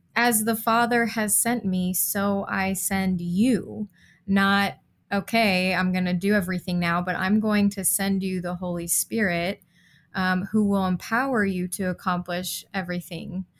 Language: English